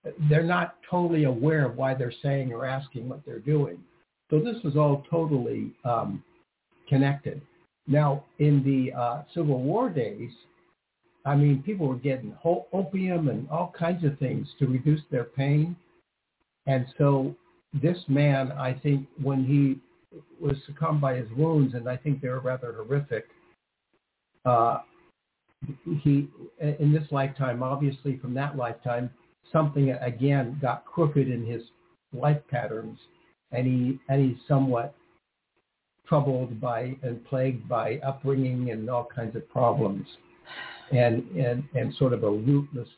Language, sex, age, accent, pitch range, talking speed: English, male, 60-79, American, 125-145 Hz, 140 wpm